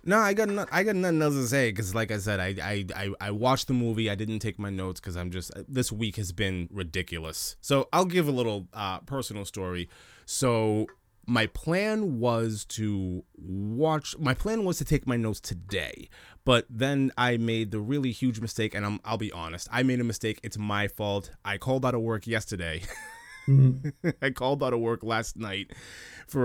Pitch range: 100-125 Hz